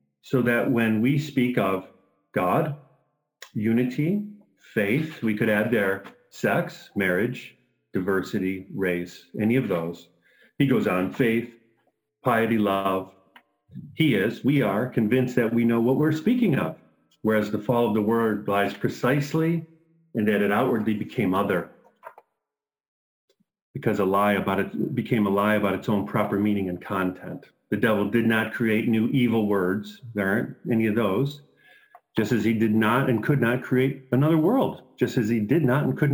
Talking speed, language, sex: 165 wpm, English, male